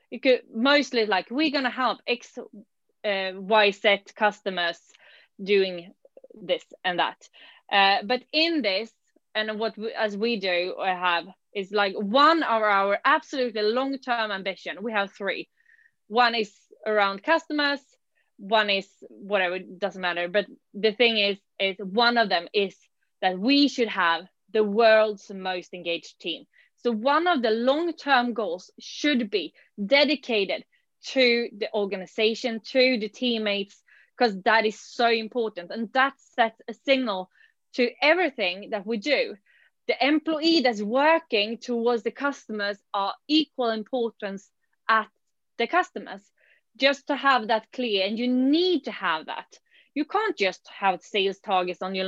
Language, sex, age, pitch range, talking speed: English, female, 20-39, 200-265 Hz, 150 wpm